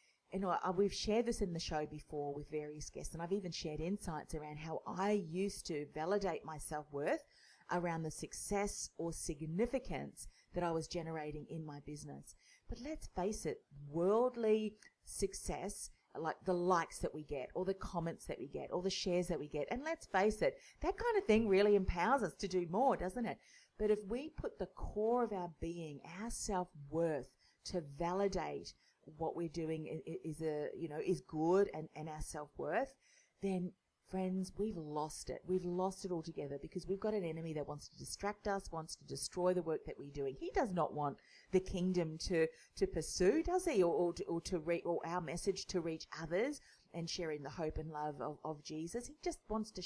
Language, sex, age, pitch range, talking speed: English, female, 40-59, 155-200 Hz, 200 wpm